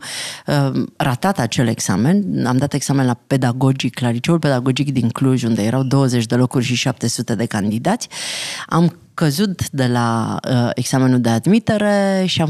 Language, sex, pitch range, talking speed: Romanian, female, 135-175 Hz, 145 wpm